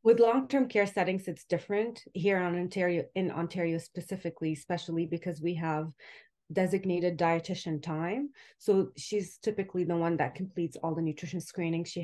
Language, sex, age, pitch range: English, female, 30-49, 160-195 Hz